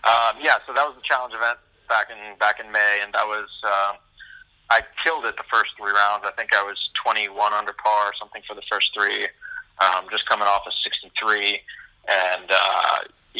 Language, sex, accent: English, male, American